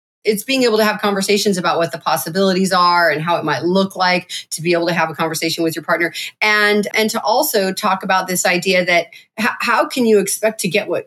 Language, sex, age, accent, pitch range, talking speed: English, female, 30-49, American, 180-240 Hz, 235 wpm